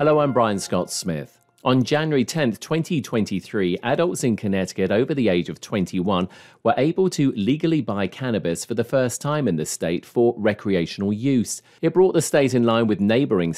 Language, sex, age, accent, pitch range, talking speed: English, male, 40-59, British, 90-125 Hz, 180 wpm